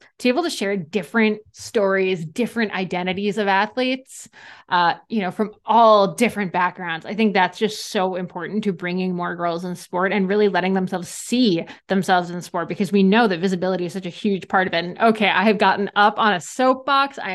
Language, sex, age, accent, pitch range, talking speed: English, female, 20-39, American, 185-225 Hz, 210 wpm